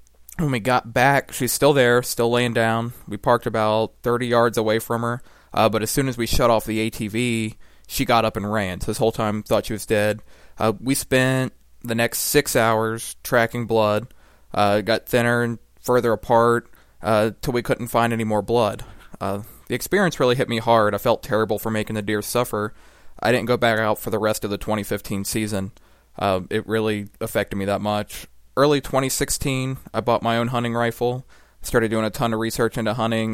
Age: 20-39